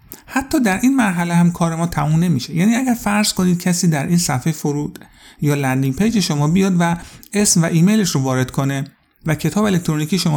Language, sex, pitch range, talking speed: Persian, male, 140-180 Hz, 195 wpm